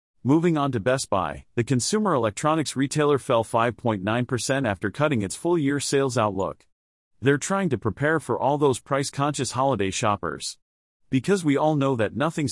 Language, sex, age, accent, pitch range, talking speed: English, male, 40-59, American, 110-150 Hz, 160 wpm